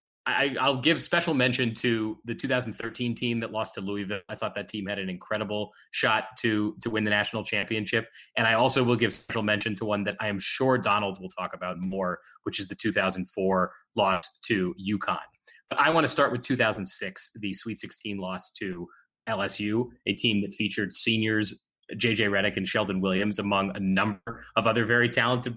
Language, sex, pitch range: English, male, 100-115 Hz